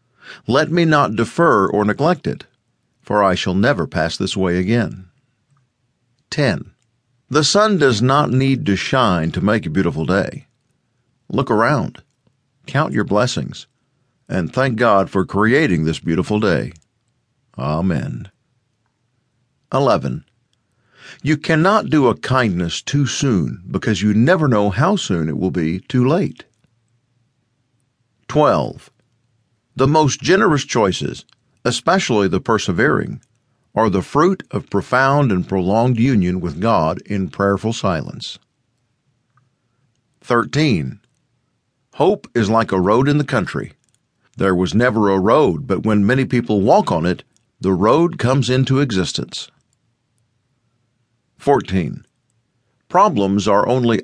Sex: male